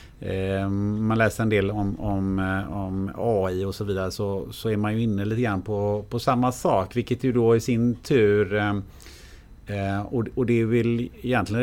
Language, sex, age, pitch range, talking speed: Swedish, male, 30-49, 95-120 Hz, 185 wpm